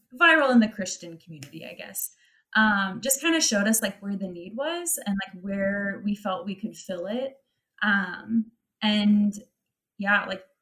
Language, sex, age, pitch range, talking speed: English, female, 20-39, 185-220 Hz, 175 wpm